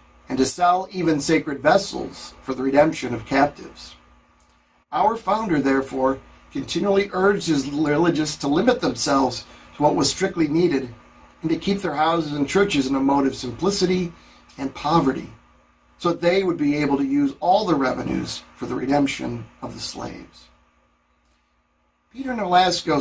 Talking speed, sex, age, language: 155 wpm, male, 50-69, English